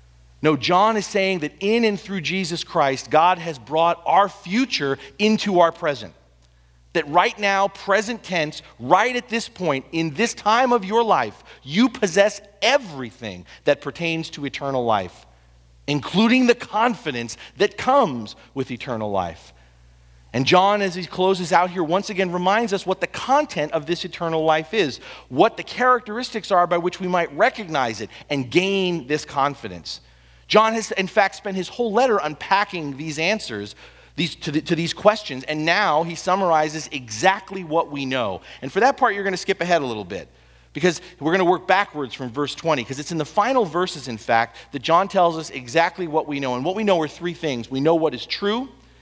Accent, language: American, English